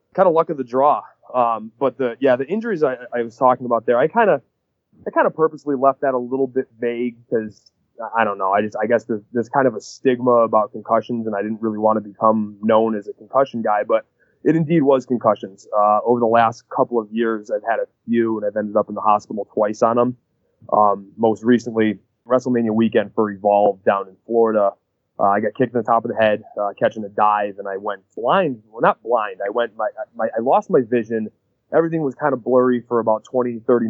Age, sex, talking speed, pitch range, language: 20-39, male, 235 wpm, 105-125 Hz, English